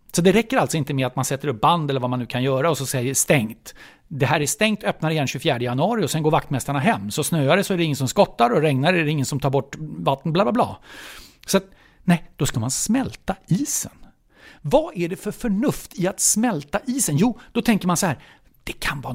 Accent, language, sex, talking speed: Swedish, English, male, 250 wpm